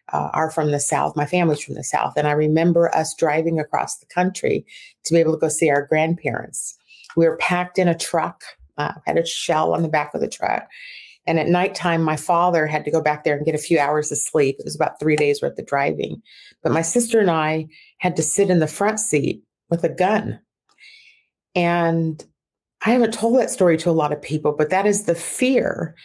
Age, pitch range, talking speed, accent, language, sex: 40-59, 160-200 Hz, 225 wpm, American, English, female